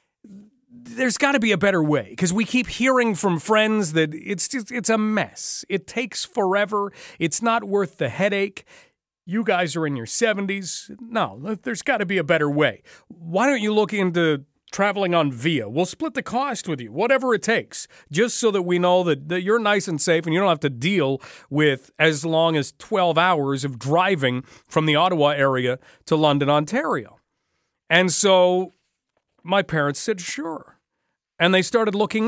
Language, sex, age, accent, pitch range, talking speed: English, male, 40-59, American, 165-225 Hz, 185 wpm